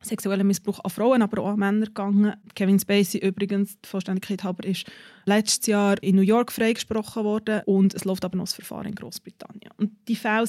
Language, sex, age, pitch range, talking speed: German, female, 20-39, 200-230 Hz, 200 wpm